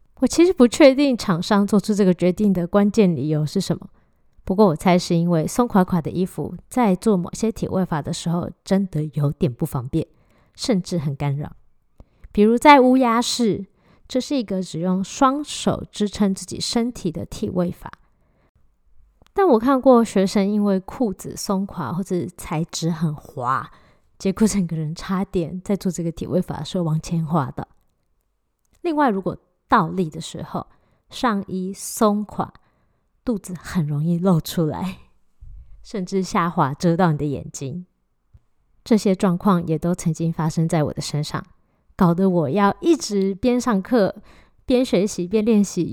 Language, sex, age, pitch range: Chinese, female, 20-39, 170-210 Hz